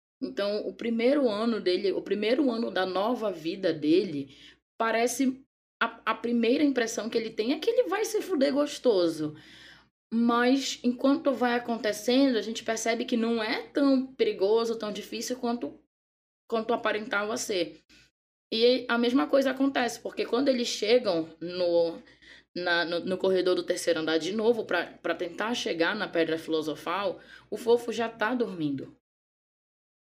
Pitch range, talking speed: 180-235 Hz, 150 wpm